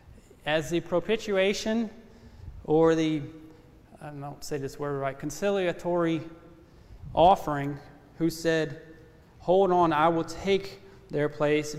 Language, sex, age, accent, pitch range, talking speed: English, male, 30-49, American, 140-165 Hz, 110 wpm